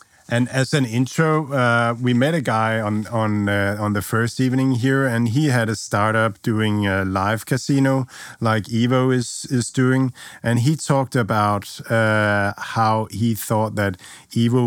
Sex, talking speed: male, 170 wpm